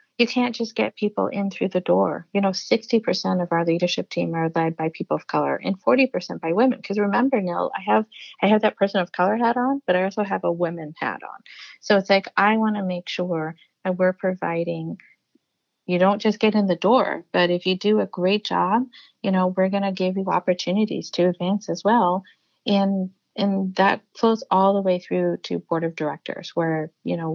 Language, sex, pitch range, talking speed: English, female, 175-225 Hz, 225 wpm